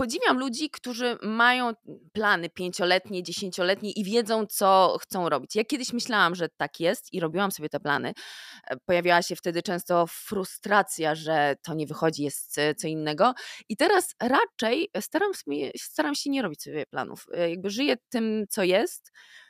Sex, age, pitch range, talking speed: female, 20-39, 160-220 Hz, 150 wpm